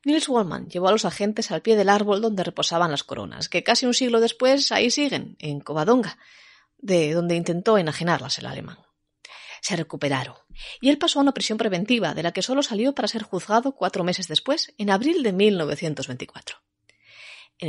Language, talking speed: Spanish, 185 wpm